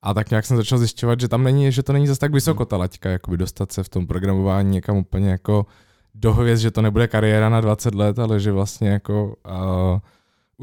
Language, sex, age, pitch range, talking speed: Czech, male, 20-39, 100-110 Hz, 220 wpm